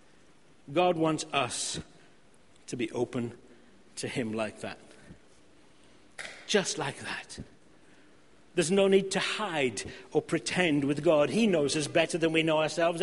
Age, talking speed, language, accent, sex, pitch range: 60-79, 140 wpm, English, British, male, 145-205 Hz